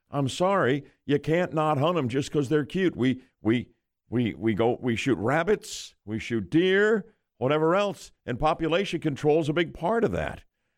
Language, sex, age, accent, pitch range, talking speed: English, male, 50-69, American, 125-185 Hz, 185 wpm